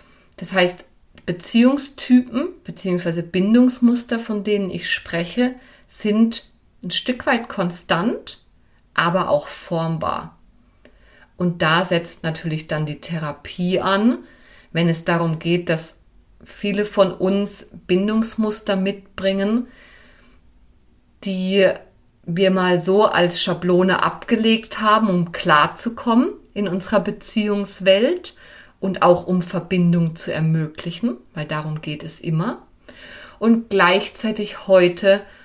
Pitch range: 165-205 Hz